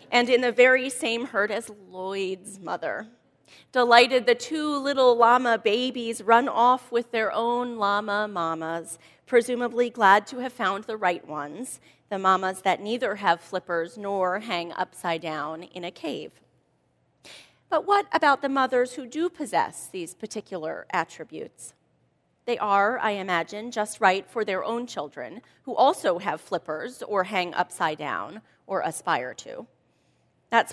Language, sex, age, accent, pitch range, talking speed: English, female, 30-49, American, 185-245 Hz, 150 wpm